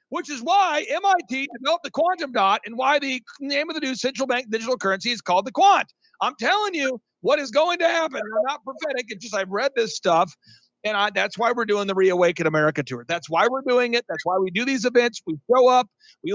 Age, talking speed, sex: 50-69, 240 wpm, male